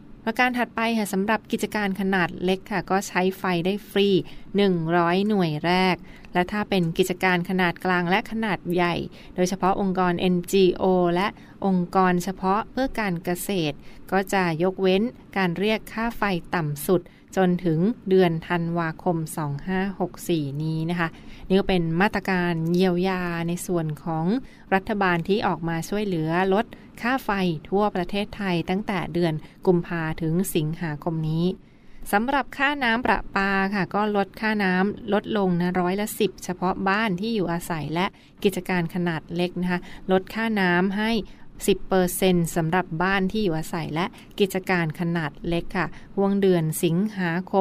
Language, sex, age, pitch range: Thai, female, 20-39, 175-200 Hz